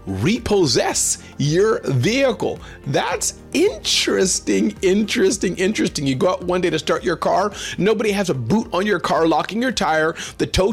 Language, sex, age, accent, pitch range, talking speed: English, male, 40-59, American, 140-195 Hz, 155 wpm